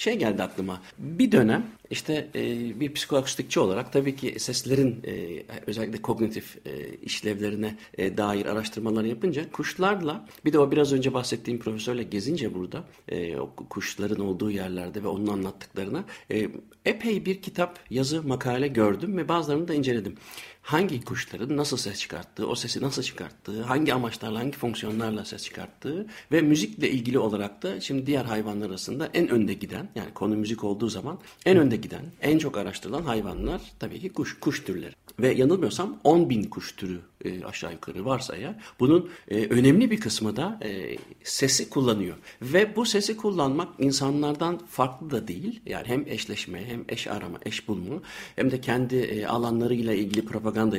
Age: 60-79